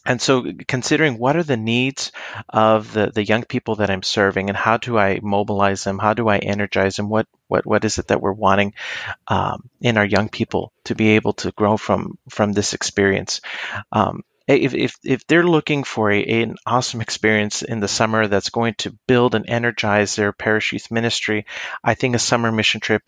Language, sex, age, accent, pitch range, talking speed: English, male, 40-59, American, 105-120 Hz, 205 wpm